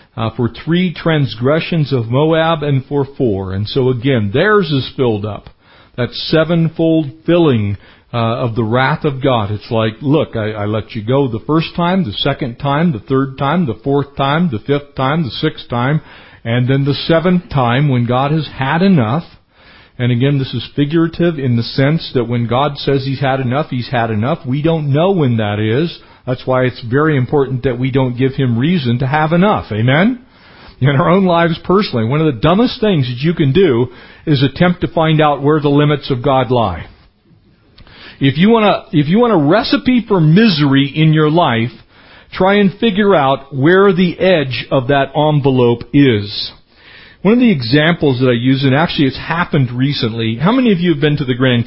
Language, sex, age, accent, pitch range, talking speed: English, male, 50-69, American, 125-165 Hz, 195 wpm